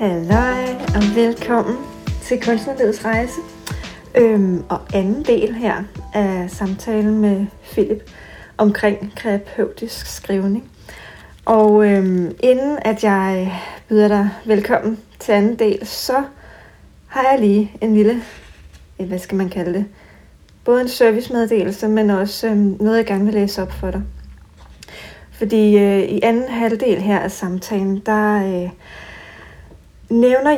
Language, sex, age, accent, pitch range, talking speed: Danish, female, 40-59, native, 195-230 Hz, 125 wpm